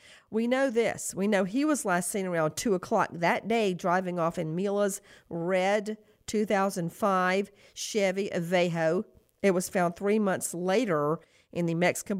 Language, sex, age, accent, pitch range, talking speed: English, female, 50-69, American, 170-215 Hz, 150 wpm